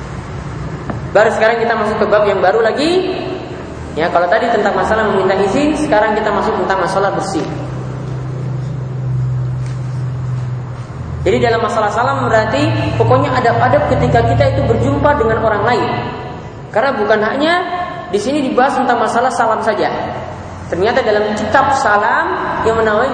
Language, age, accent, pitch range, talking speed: Indonesian, 20-39, native, 195-275 Hz, 135 wpm